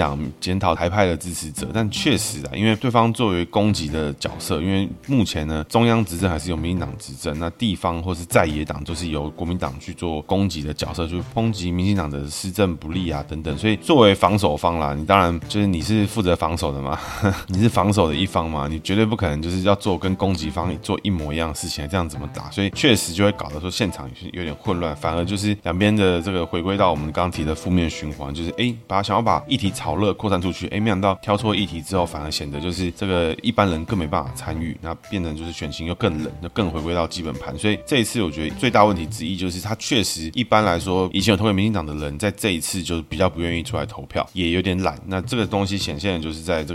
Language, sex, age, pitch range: Chinese, male, 20-39, 80-100 Hz